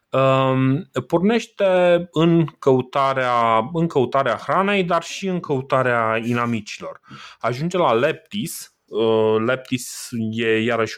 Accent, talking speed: native, 105 wpm